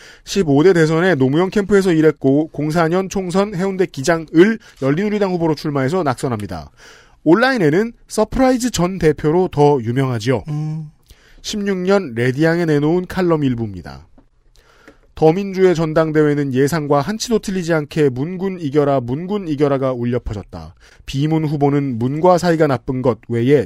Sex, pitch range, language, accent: male, 130-170 Hz, Korean, native